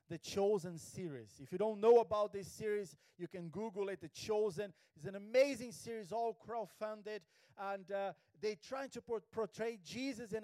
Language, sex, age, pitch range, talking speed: English, male, 40-59, 150-230 Hz, 170 wpm